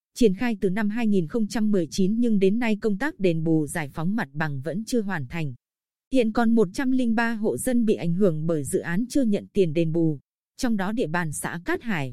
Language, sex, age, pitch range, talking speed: Vietnamese, female, 20-39, 180-235 Hz, 215 wpm